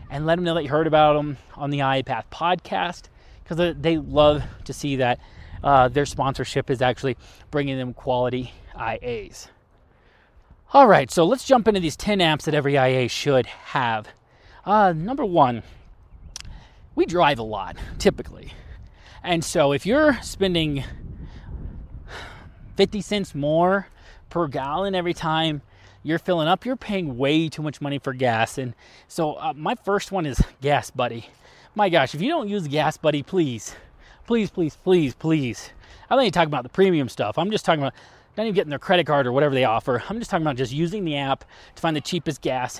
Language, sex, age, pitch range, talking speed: English, male, 30-49, 130-180 Hz, 185 wpm